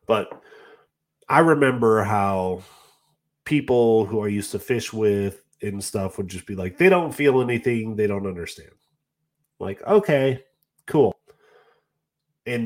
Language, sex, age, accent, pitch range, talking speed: English, male, 30-49, American, 100-140 Hz, 135 wpm